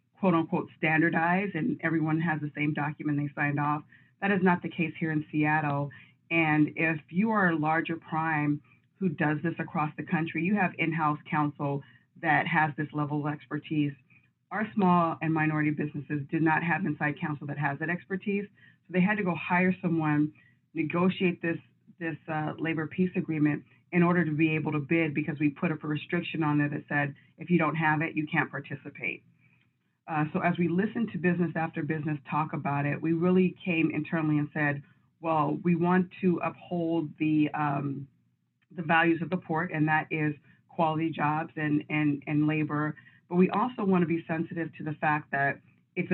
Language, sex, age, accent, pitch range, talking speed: English, female, 40-59, American, 150-170 Hz, 190 wpm